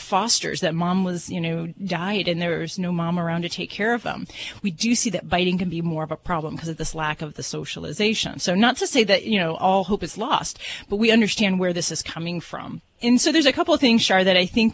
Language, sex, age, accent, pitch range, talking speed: English, female, 30-49, American, 175-215 Hz, 265 wpm